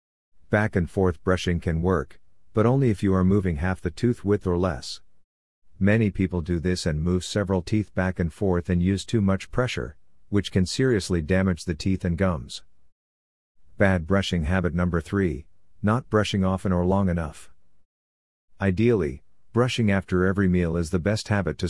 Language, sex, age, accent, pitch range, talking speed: English, male, 50-69, American, 85-100 Hz, 175 wpm